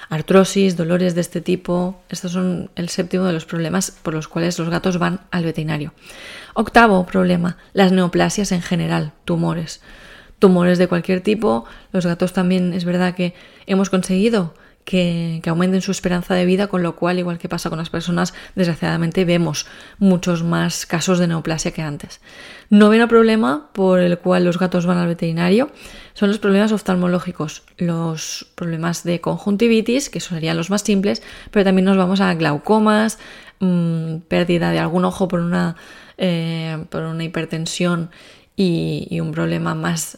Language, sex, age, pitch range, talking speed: Spanish, female, 20-39, 170-195 Hz, 165 wpm